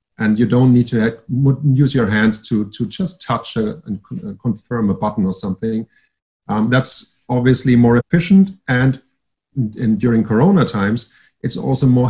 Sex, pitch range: male, 110-145 Hz